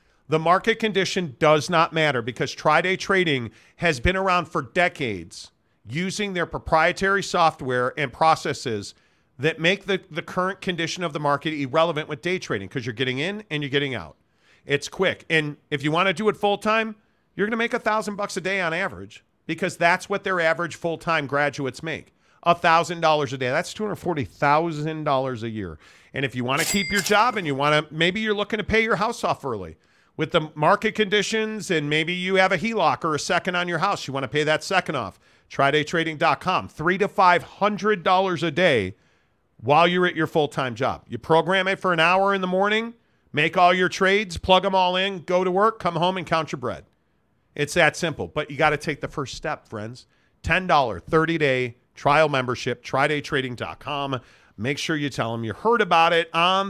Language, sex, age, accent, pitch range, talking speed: English, male, 40-59, American, 140-185 Hz, 200 wpm